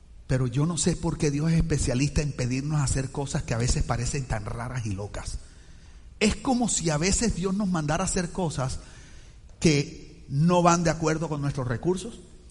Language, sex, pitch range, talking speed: Spanish, male, 110-170 Hz, 190 wpm